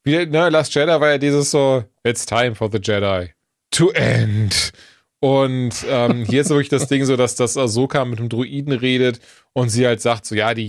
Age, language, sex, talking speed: 30-49, German, male, 215 wpm